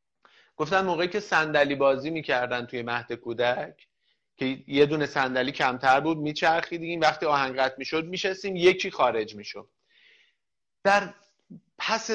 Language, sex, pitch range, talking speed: Persian, male, 140-185 Hz, 135 wpm